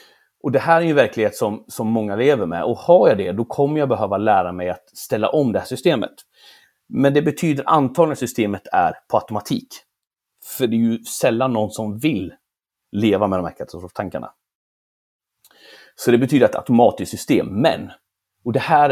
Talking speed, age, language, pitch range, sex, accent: 185 wpm, 30-49, Swedish, 105-155 Hz, male, native